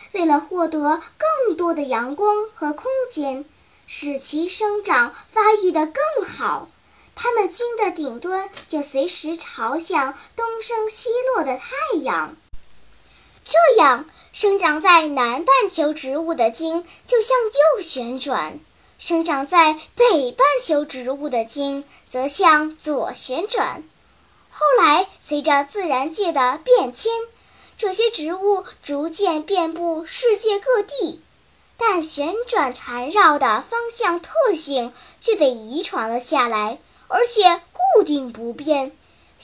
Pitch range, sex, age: 285-420 Hz, male, 10-29